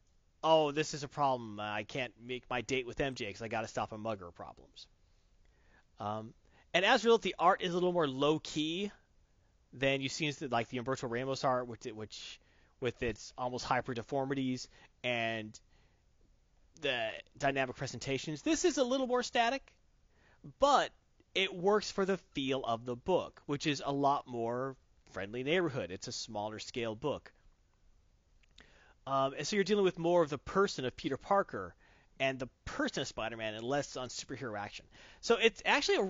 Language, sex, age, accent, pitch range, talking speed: English, male, 30-49, American, 120-175 Hz, 175 wpm